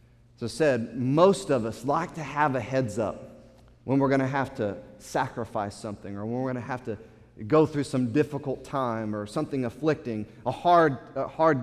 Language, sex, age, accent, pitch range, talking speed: English, male, 30-49, American, 125-170 Hz, 190 wpm